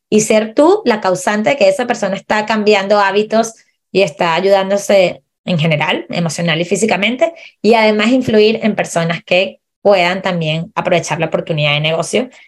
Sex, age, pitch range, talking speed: female, 20-39, 185-225 Hz, 160 wpm